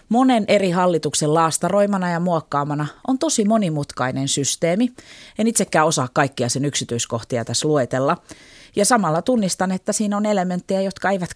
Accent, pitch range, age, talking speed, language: native, 140-200 Hz, 30-49, 145 wpm, Finnish